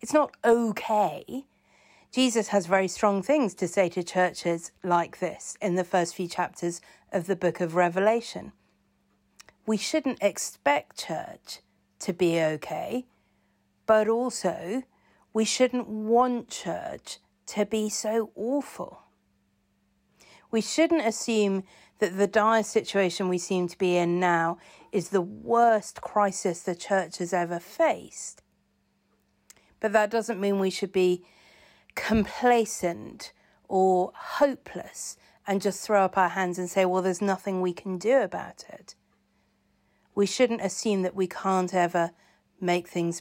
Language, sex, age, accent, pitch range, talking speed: English, female, 40-59, British, 180-220 Hz, 135 wpm